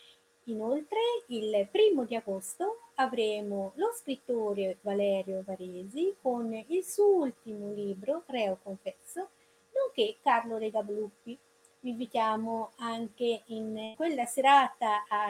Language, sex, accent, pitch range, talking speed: Italian, female, native, 210-325 Hz, 105 wpm